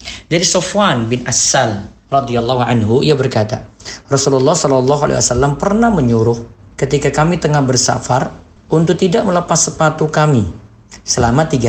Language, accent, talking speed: Indonesian, native, 120 wpm